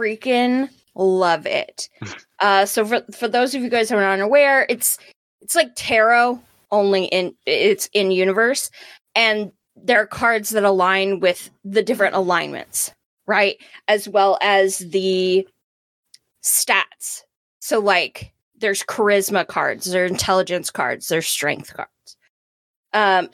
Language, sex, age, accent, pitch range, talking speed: English, female, 20-39, American, 190-240 Hz, 130 wpm